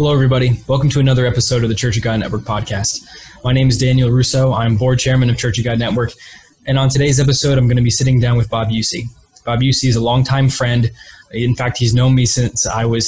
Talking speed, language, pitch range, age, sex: 245 wpm, English, 120-135 Hz, 20-39, male